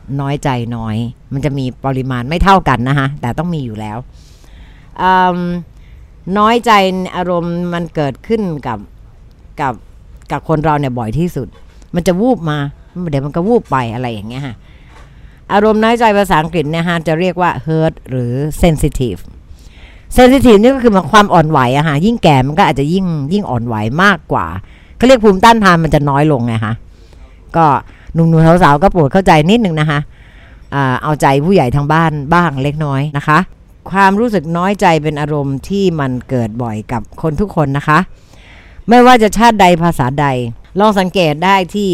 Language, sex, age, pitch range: Thai, female, 60-79, 130-190 Hz